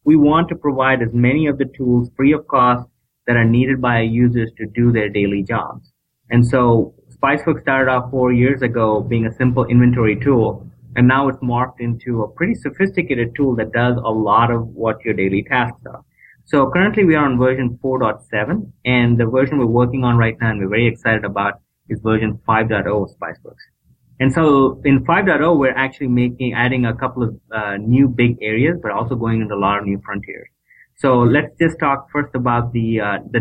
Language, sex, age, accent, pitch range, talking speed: English, male, 30-49, Indian, 115-130 Hz, 200 wpm